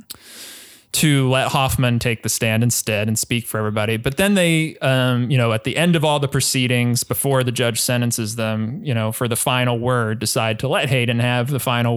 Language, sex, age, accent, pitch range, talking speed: English, male, 20-39, American, 115-135 Hz, 210 wpm